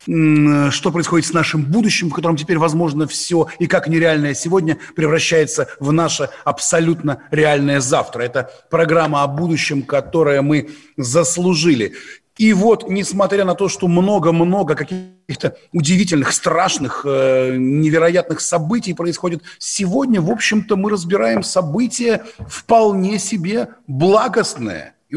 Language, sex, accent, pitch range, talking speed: Russian, male, native, 160-200 Hz, 120 wpm